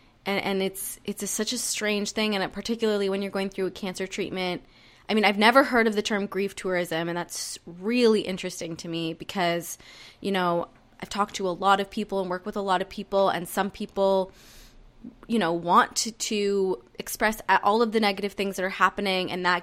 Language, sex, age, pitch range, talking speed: English, female, 20-39, 180-225 Hz, 215 wpm